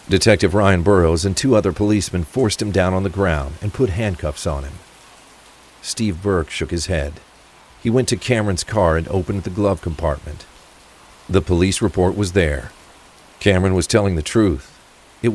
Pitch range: 85-105 Hz